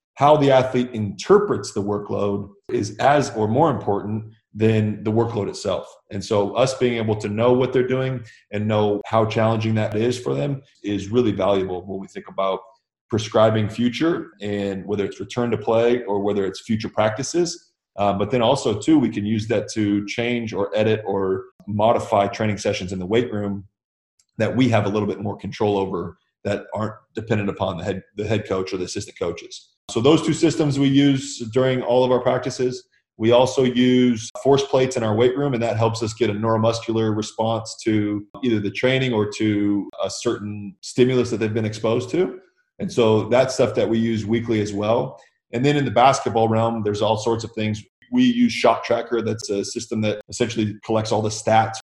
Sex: male